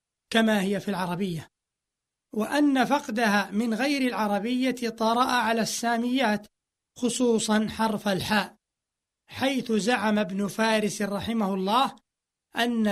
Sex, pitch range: male, 205-250 Hz